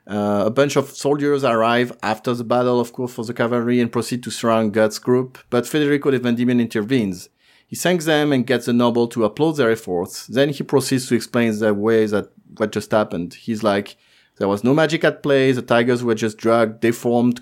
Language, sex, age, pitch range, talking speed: English, male, 30-49, 110-135 Hz, 210 wpm